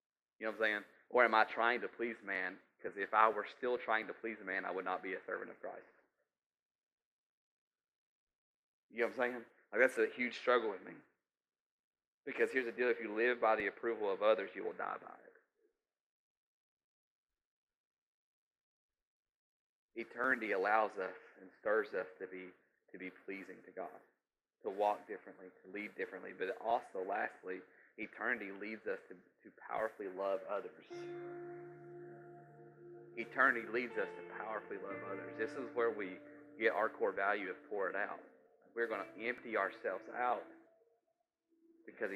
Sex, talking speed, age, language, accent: male, 160 wpm, 30-49, English, American